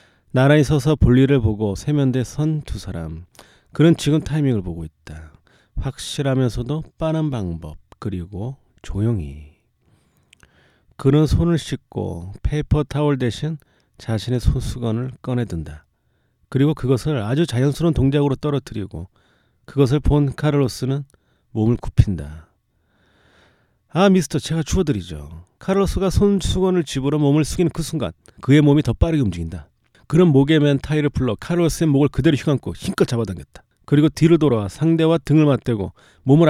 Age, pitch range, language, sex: 30-49, 105-150 Hz, Korean, male